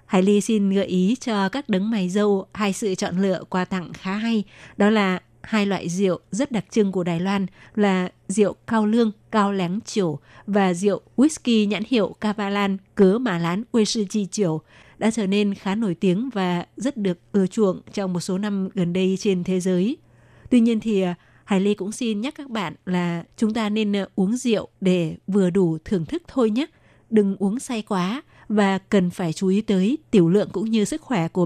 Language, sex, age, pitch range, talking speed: Vietnamese, female, 20-39, 185-215 Hz, 205 wpm